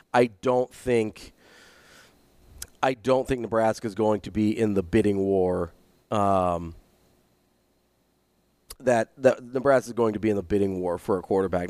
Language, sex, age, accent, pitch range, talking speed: English, male, 30-49, American, 100-125 Hz, 155 wpm